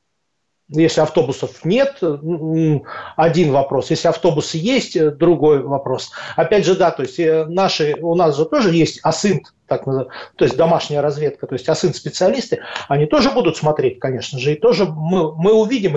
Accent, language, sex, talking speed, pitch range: native, Russian, male, 155 wpm, 145-180 Hz